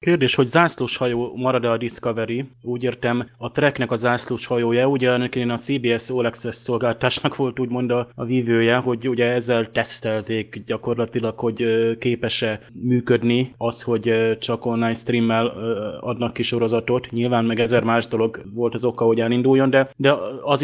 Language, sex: Hungarian, male